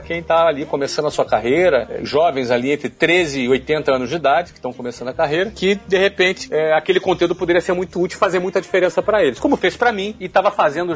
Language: Portuguese